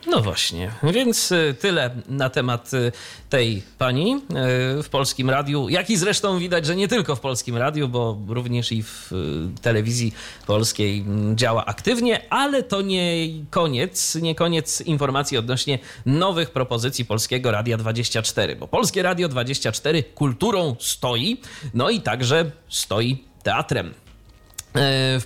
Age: 30-49